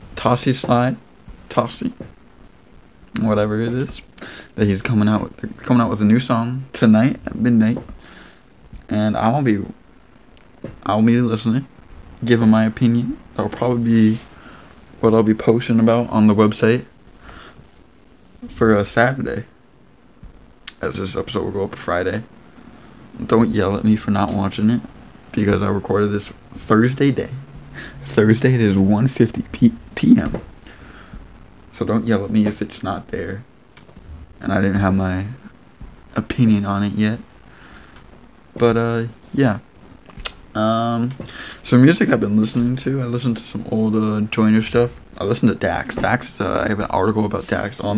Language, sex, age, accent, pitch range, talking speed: English, male, 20-39, American, 105-120 Hz, 150 wpm